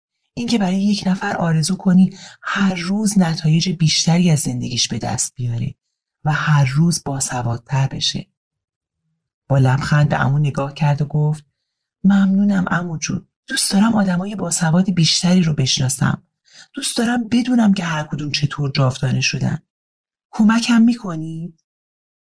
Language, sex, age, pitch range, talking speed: Persian, male, 30-49, 140-180 Hz, 125 wpm